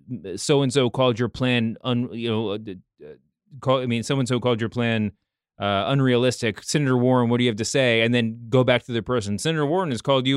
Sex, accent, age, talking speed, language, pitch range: male, American, 30-49, 225 wpm, English, 120-155 Hz